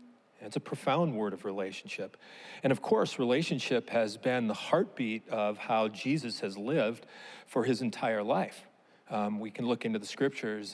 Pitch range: 115-185 Hz